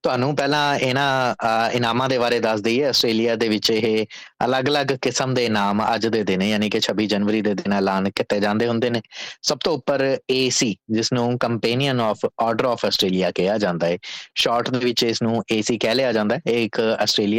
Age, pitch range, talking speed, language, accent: 20-39, 105-125 Hz, 85 wpm, English, Indian